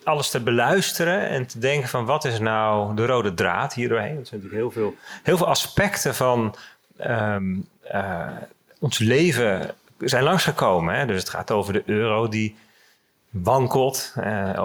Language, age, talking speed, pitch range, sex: Dutch, 40-59, 165 wpm, 110-150 Hz, male